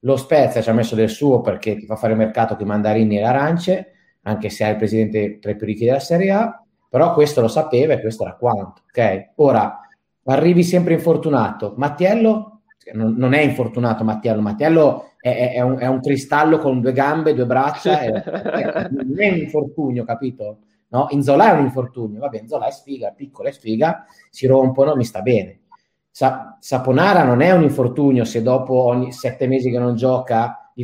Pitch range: 115-150 Hz